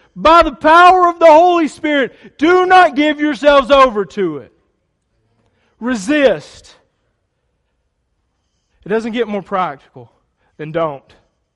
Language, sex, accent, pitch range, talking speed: English, male, American, 130-180 Hz, 115 wpm